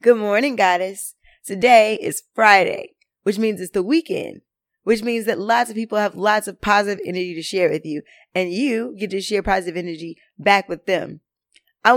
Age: 20-39